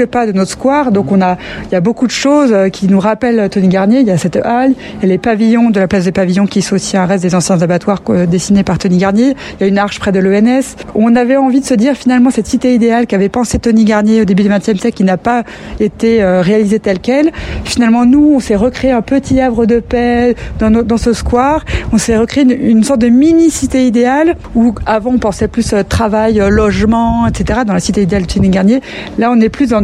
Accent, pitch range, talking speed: French, 200-245 Hz, 245 wpm